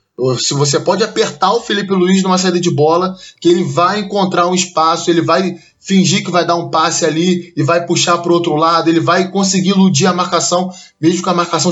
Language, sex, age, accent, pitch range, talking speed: Portuguese, male, 20-39, Brazilian, 165-190 Hz, 220 wpm